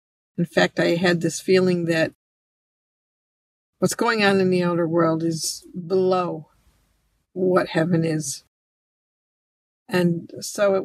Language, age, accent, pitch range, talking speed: English, 50-69, American, 165-190 Hz, 120 wpm